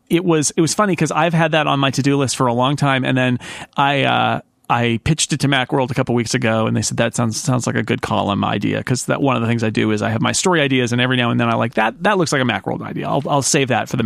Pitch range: 120-150 Hz